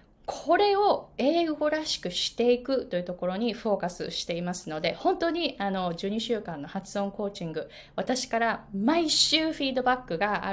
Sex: female